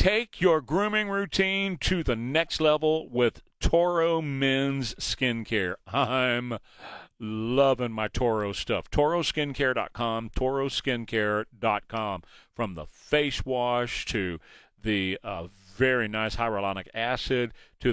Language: English